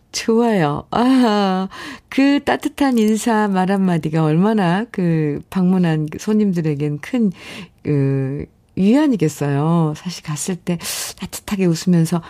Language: Korean